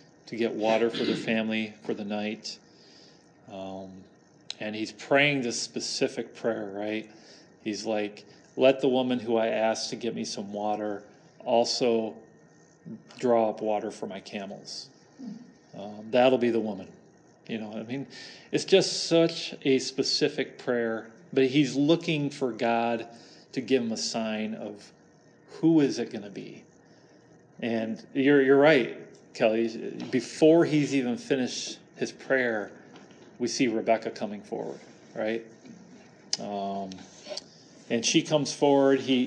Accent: American